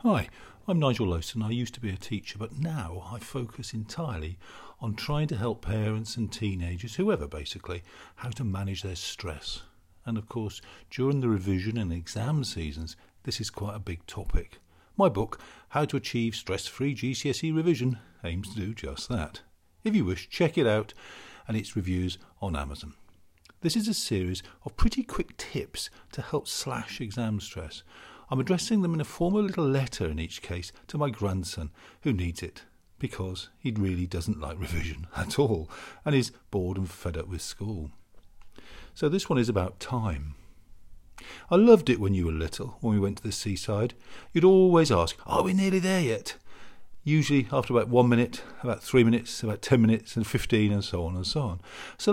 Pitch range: 90-130 Hz